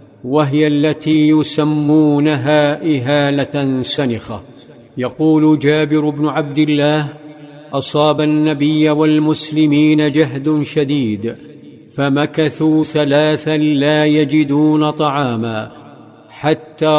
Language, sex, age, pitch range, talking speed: Arabic, male, 50-69, 145-155 Hz, 75 wpm